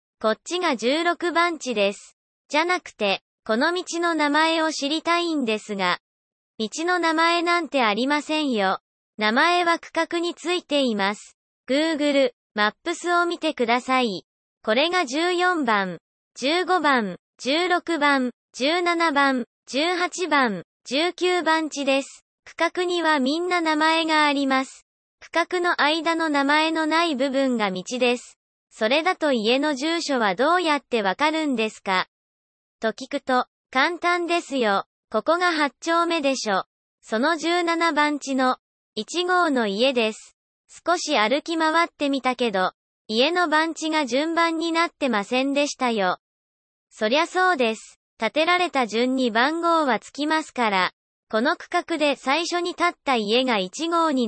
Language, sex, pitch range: Japanese, male, 240-335 Hz